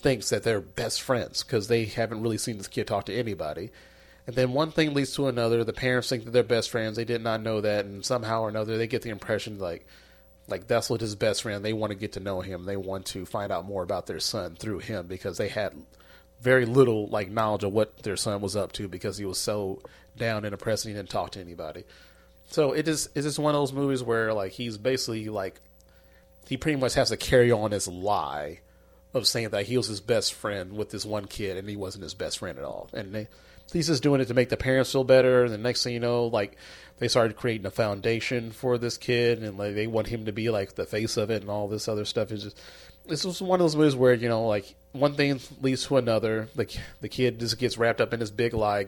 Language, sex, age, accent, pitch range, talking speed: English, male, 30-49, American, 105-125 Hz, 255 wpm